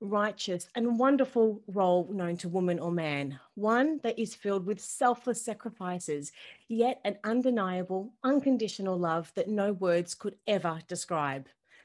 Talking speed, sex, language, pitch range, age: 135 wpm, female, English, 180-220 Hz, 30-49